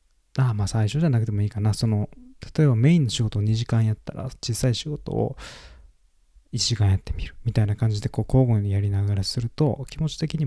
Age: 20-39